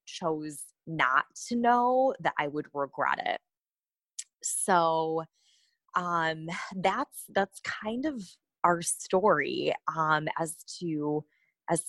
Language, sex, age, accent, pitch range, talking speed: English, female, 20-39, American, 145-175 Hz, 105 wpm